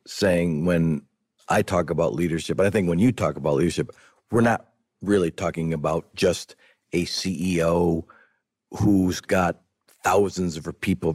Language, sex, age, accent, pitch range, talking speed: English, male, 50-69, American, 85-105 Hz, 140 wpm